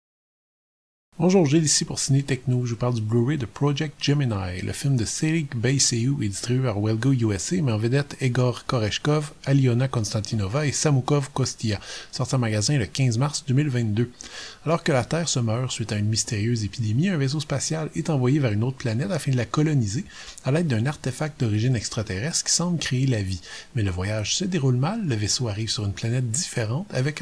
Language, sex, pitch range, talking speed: English, male, 110-145 Hz, 200 wpm